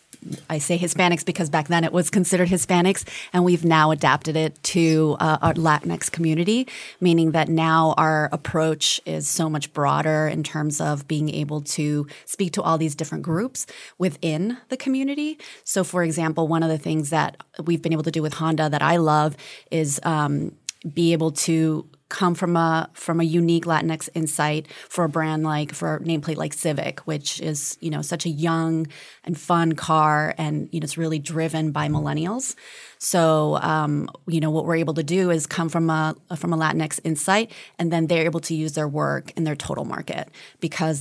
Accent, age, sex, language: American, 30-49, female, English